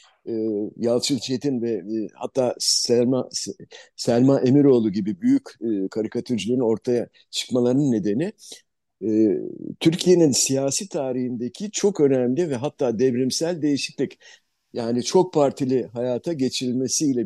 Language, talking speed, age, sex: Turkish, 110 wpm, 50-69, male